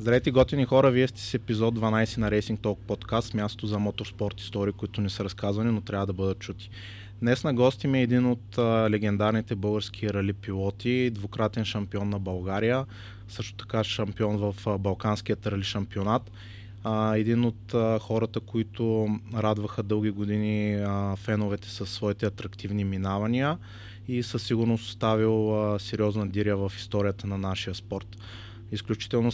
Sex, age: male, 20-39